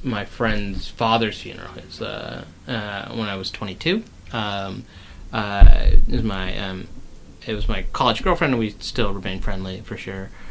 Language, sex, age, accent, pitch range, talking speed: English, male, 30-49, American, 95-115 Hz, 165 wpm